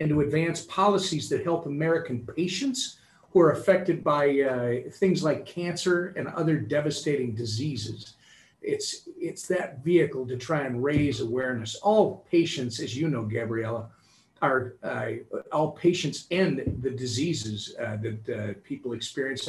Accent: American